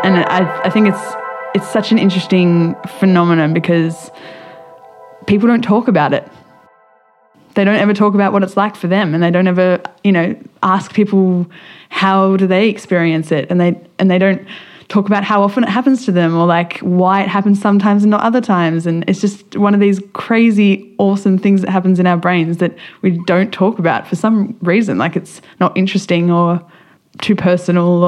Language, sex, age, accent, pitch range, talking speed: English, female, 20-39, Australian, 170-205 Hz, 195 wpm